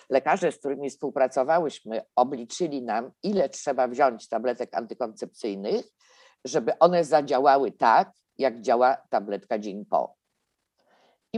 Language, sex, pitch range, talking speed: Polish, female, 115-155 Hz, 110 wpm